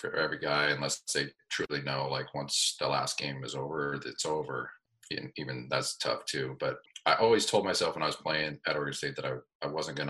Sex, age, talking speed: male, 40-59, 225 wpm